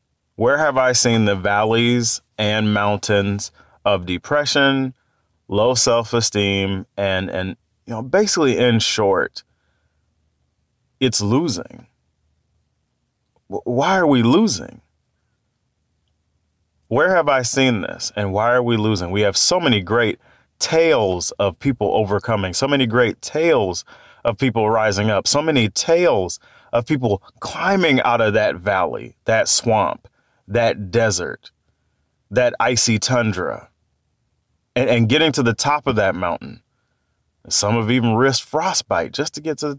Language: English